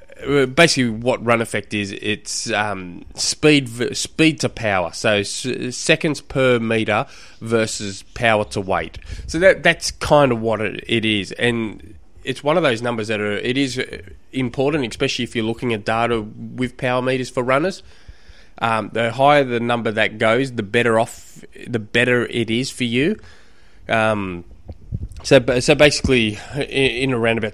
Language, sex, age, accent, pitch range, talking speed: English, male, 20-39, Australian, 110-130 Hz, 155 wpm